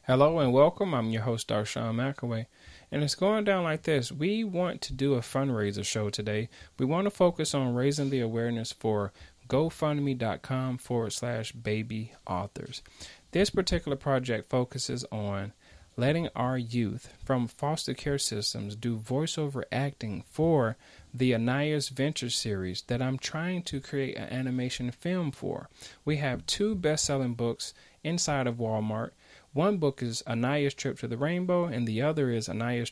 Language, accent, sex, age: English, American, male, 30-49